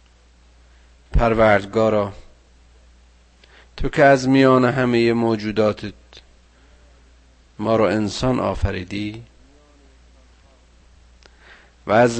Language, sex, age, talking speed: Persian, male, 50-69, 65 wpm